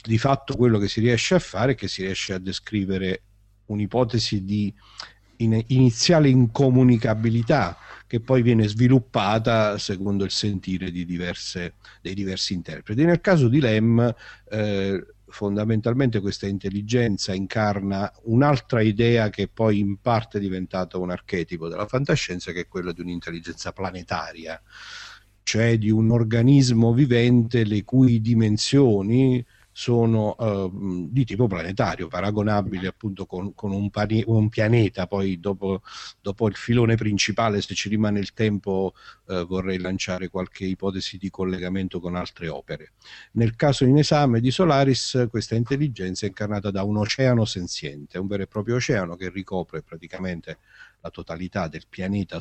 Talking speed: 140 wpm